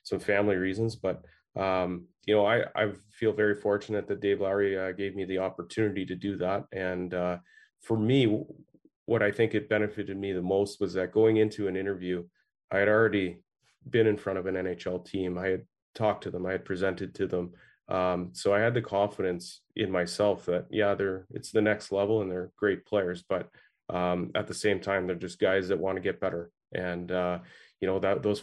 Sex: male